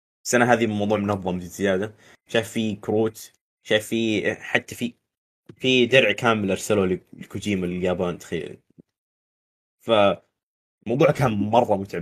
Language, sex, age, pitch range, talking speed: Arabic, male, 20-39, 95-115 Hz, 115 wpm